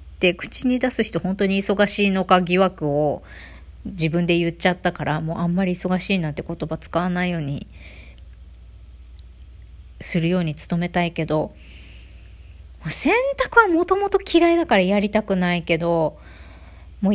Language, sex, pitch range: Japanese, female, 150-215 Hz